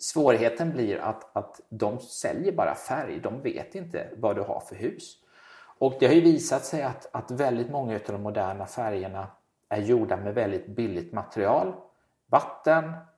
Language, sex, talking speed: Swedish, male, 170 wpm